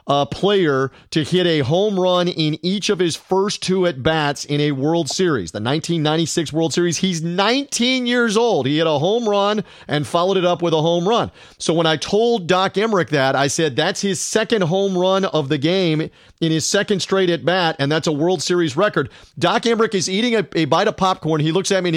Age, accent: 40-59, American